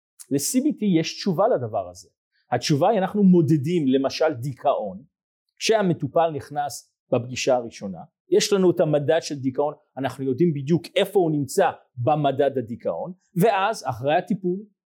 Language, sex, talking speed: Hebrew, male, 130 wpm